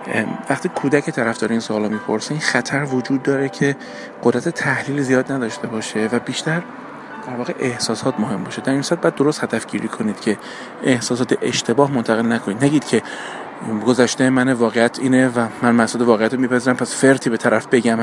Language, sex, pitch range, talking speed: Persian, male, 115-135 Hz, 165 wpm